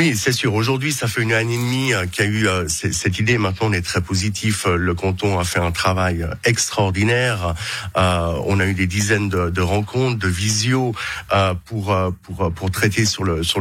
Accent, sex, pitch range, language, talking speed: French, male, 95-120 Hz, French, 210 wpm